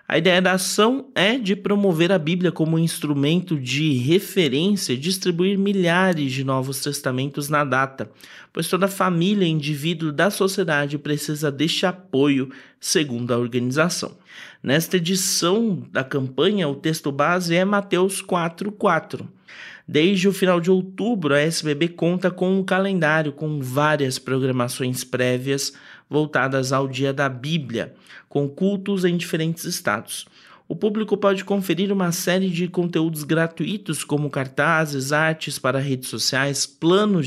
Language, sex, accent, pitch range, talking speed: Portuguese, male, Brazilian, 140-185 Hz, 135 wpm